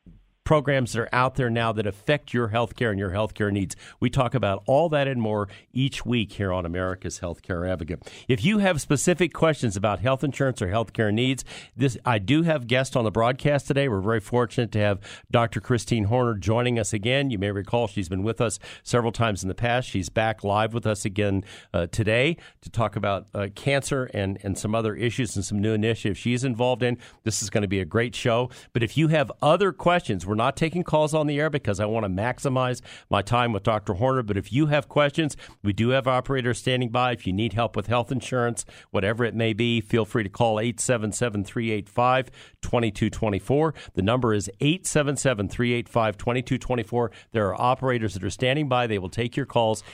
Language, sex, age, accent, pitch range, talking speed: English, male, 50-69, American, 105-130 Hz, 205 wpm